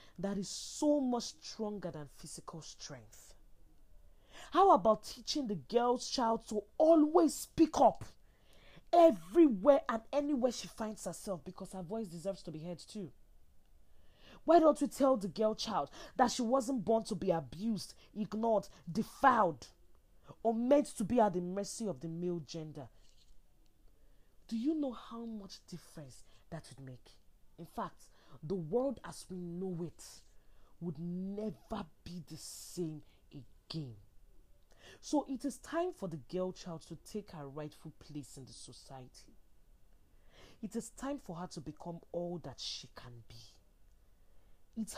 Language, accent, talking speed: English, Nigerian, 150 wpm